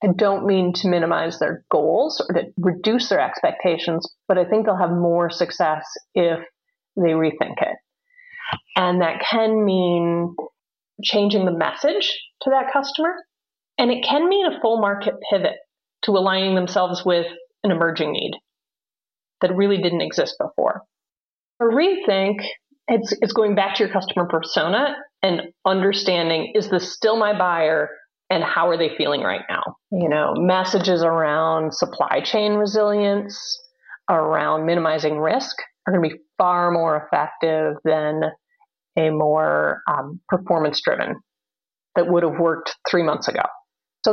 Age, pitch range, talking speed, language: 30-49, 170-215 Hz, 145 wpm, English